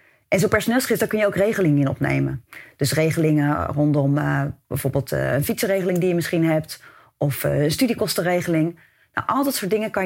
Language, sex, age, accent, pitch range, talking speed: Dutch, female, 30-49, Dutch, 150-215 Hz, 190 wpm